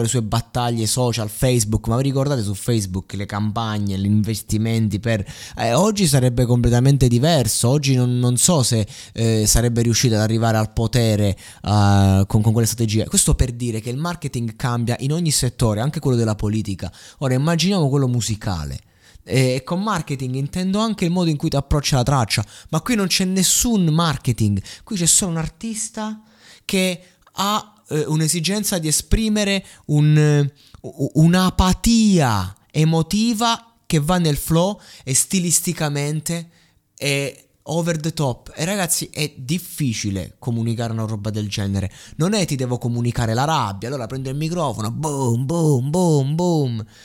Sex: male